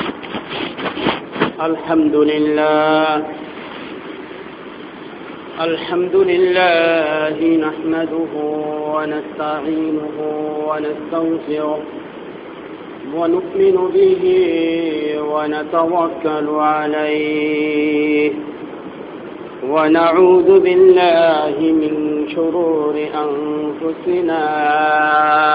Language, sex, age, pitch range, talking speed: Bengali, male, 50-69, 150-185 Hz, 40 wpm